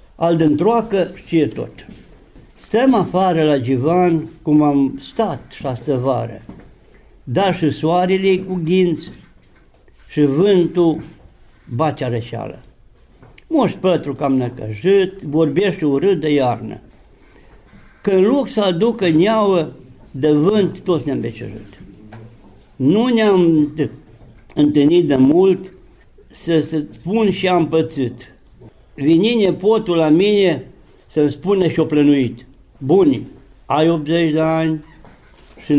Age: 60-79